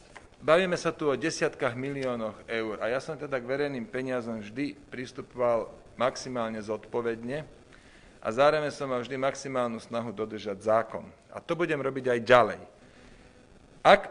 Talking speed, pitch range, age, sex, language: 145 wpm, 125-155 Hz, 40-59, male, Slovak